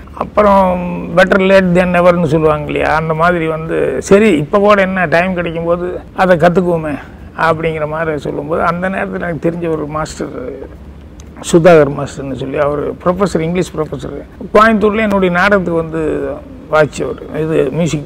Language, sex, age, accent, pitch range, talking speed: Tamil, male, 50-69, native, 155-185 Hz, 135 wpm